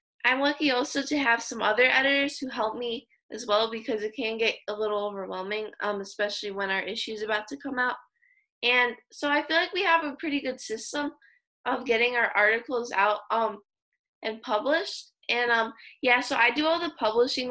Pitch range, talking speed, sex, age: 210-265 Hz, 200 wpm, female, 10-29